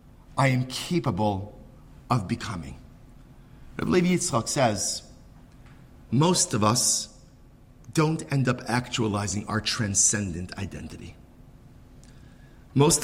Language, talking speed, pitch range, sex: English, 85 wpm, 105-130 Hz, male